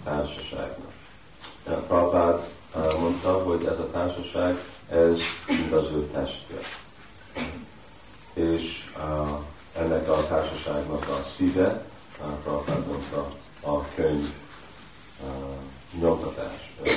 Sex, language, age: male, Hungarian, 40-59